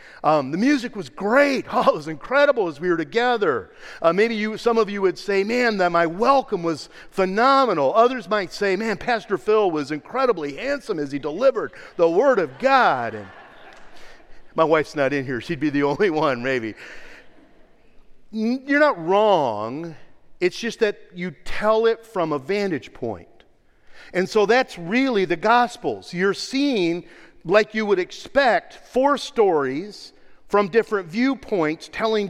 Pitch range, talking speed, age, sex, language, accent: 165-245 Hz, 160 wpm, 50-69, male, English, American